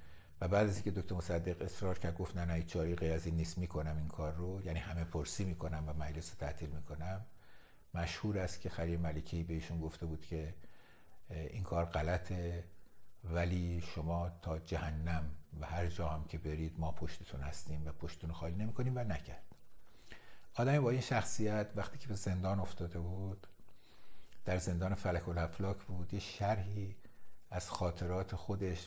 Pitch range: 80-95 Hz